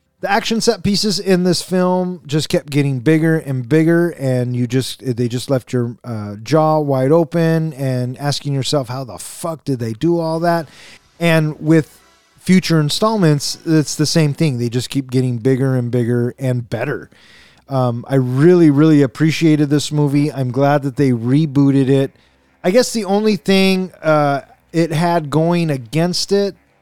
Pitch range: 130-165 Hz